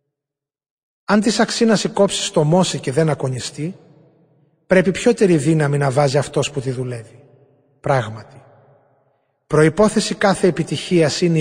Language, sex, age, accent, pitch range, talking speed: Greek, male, 30-49, native, 140-170 Hz, 125 wpm